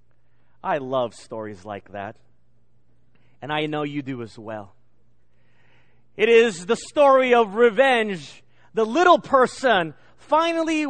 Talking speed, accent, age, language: 120 wpm, American, 40-59, English